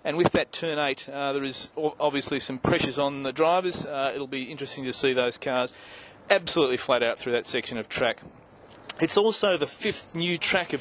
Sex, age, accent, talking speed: male, 30-49, Australian, 200 wpm